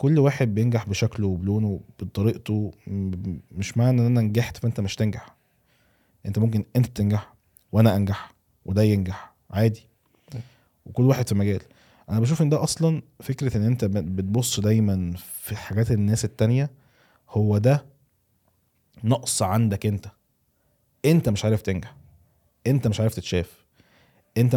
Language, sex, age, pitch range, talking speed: Arabic, male, 20-39, 100-125 Hz, 135 wpm